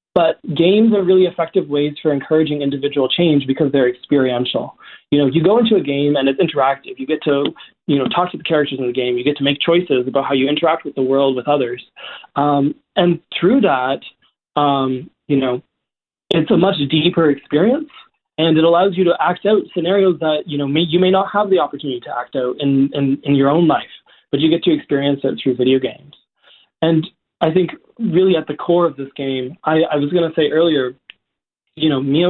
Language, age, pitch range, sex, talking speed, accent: English, 20-39, 140-180 Hz, male, 215 wpm, American